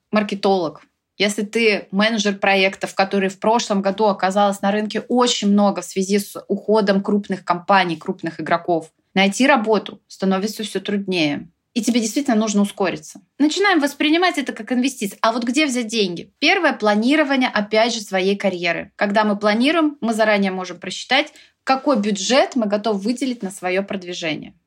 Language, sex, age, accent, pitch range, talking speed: Russian, female, 20-39, native, 195-250 Hz, 155 wpm